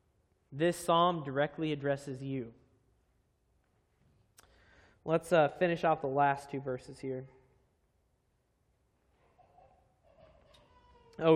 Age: 20-39